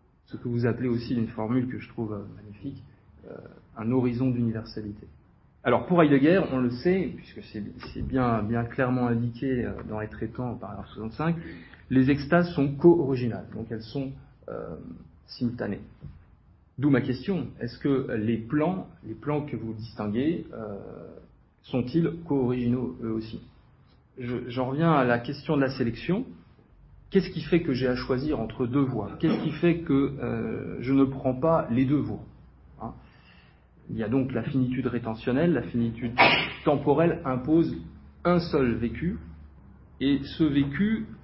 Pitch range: 110-140 Hz